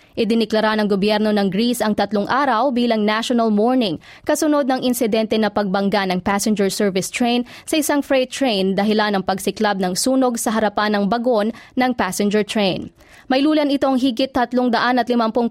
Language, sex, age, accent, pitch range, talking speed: English, female, 20-39, Filipino, 210-255 Hz, 165 wpm